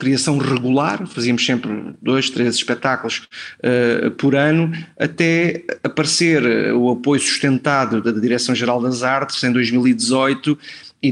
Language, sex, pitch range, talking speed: Portuguese, male, 125-145 Hz, 120 wpm